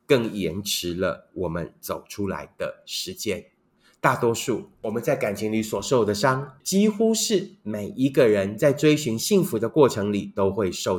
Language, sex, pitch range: Chinese, male, 105-155 Hz